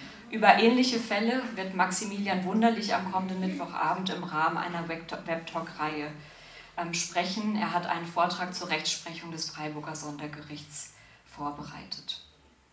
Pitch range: 165-195 Hz